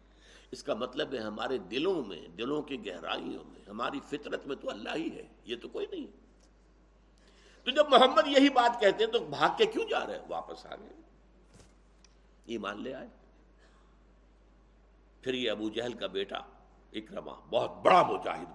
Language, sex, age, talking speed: Urdu, male, 60-79, 180 wpm